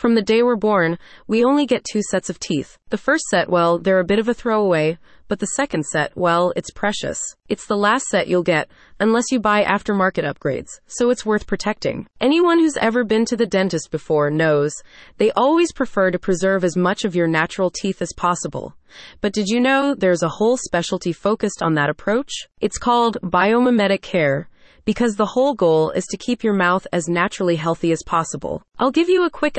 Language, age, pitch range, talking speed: English, 30-49, 175-235 Hz, 205 wpm